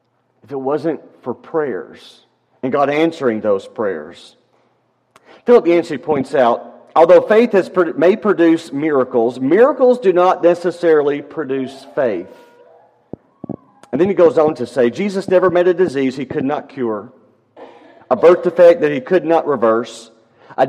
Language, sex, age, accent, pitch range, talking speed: English, male, 40-59, American, 135-195 Hz, 145 wpm